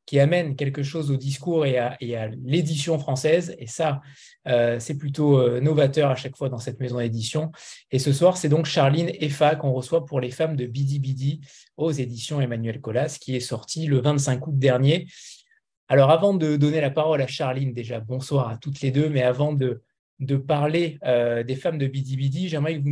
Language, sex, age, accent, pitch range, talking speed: French, male, 20-39, French, 135-160 Hz, 210 wpm